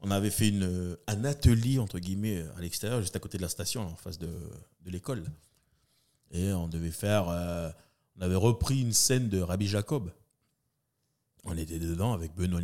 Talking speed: 185 wpm